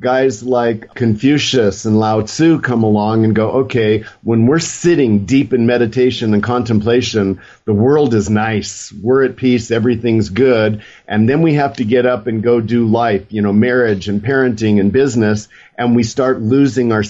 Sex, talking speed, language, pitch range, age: male, 180 wpm, English, 105-125 Hz, 50-69